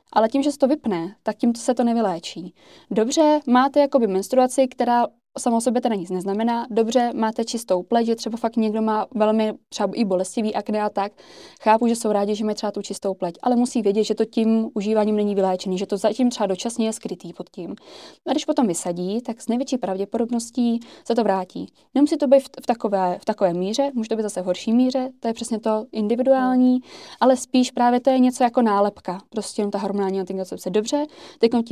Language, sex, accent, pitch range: Czech, female, native, 205-240 Hz